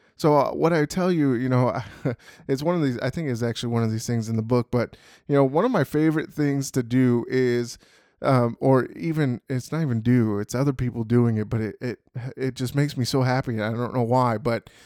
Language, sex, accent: English, male, American